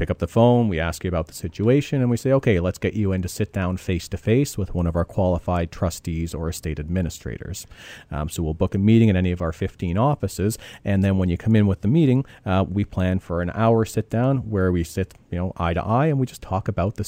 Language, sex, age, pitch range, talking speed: English, male, 40-59, 85-110 Hz, 265 wpm